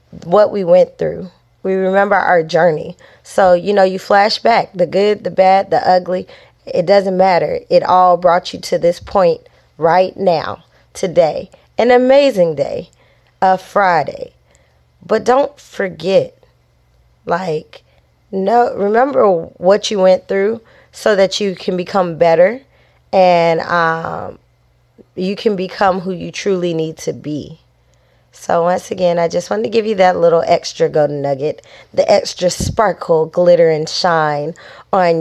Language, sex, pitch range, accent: English, female, 170-220 Hz, American